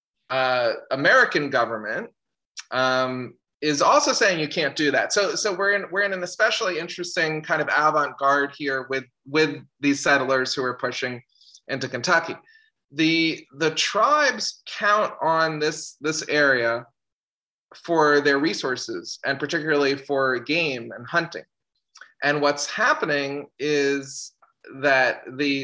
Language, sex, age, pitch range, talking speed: English, male, 20-39, 130-165 Hz, 130 wpm